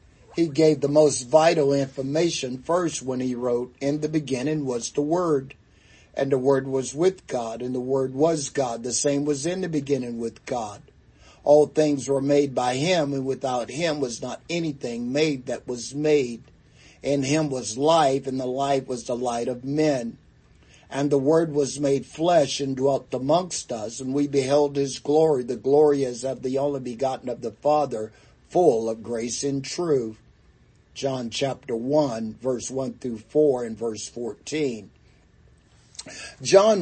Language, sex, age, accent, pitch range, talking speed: English, male, 60-79, American, 125-150 Hz, 170 wpm